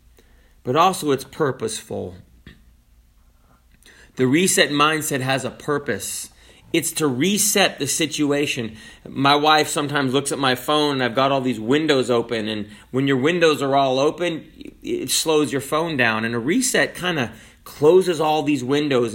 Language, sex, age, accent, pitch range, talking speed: English, male, 30-49, American, 130-180 Hz, 155 wpm